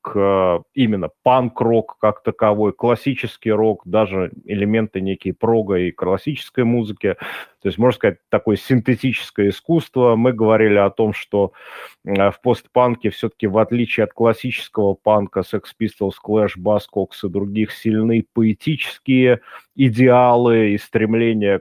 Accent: native